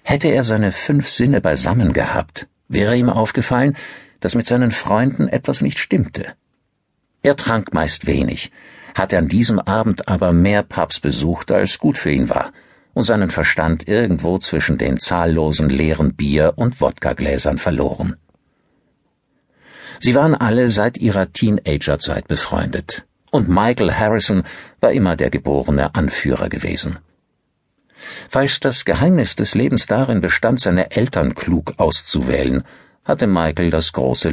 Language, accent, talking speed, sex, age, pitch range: German, German, 135 wpm, male, 60-79, 80-115 Hz